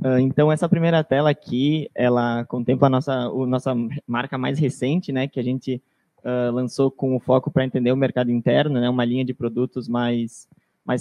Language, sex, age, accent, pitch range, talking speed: Portuguese, male, 20-39, Brazilian, 125-150 Hz, 190 wpm